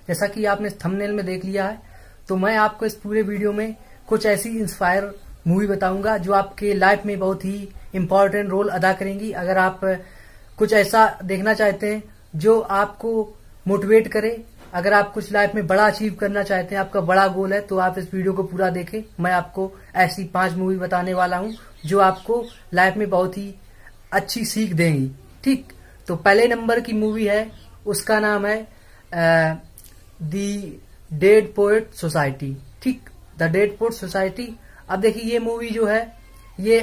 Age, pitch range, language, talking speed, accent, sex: 20-39, 190-220 Hz, Hindi, 170 wpm, native, female